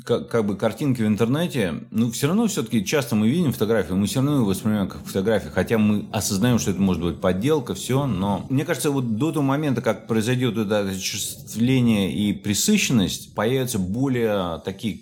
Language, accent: Russian, native